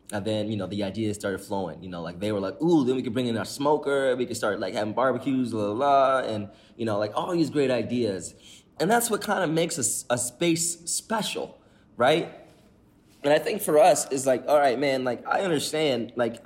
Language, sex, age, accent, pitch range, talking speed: English, male, 20-39, American, 110-155 Hz, 230 wpm